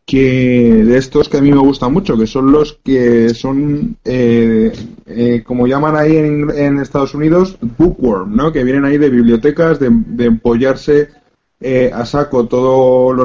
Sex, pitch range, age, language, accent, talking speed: male, 120-140 Hz, 20-39, Spanish, Spanish, 170 wpm